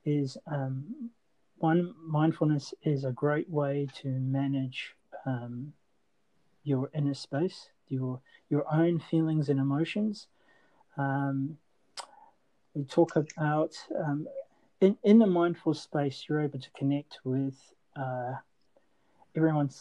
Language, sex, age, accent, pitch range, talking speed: English, male, 40-59, Australian, 135-160 Hz, 110 wpm